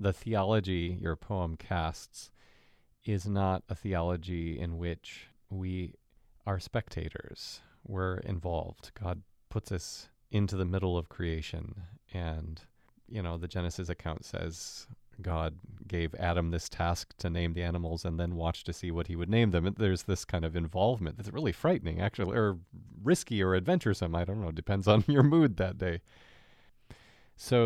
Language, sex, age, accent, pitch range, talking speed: English, male, 30-49, American, 85-110 Hz, 160 wpm